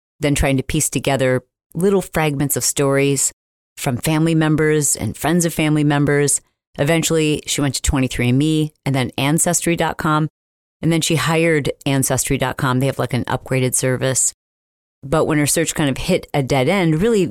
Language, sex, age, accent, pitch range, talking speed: English, female, 40-59, American, 135-160 Hz, 165 wpm